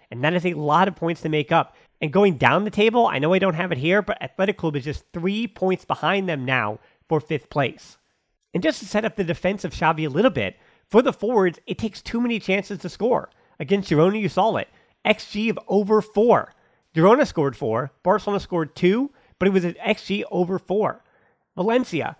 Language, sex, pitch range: English, male, 150-210 Hz